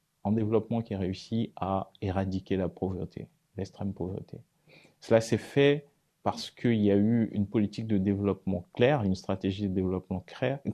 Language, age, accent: French, 30-49, French